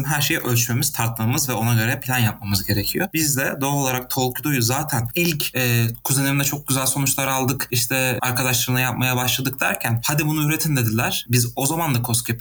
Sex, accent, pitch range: male, native, 115-145 Hz